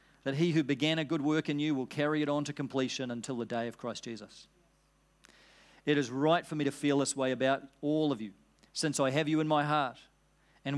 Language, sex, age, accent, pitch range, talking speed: English, male, 40-59, Australian, 135-165 Hz, 235 wpm